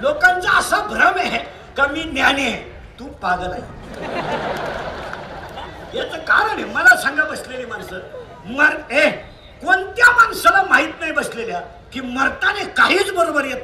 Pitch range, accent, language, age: 260-395 Hz, native, Marathi, 50-69